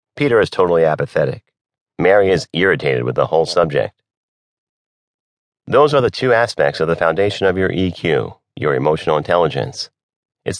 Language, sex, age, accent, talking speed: English, male, 40-59, American, 145 wpm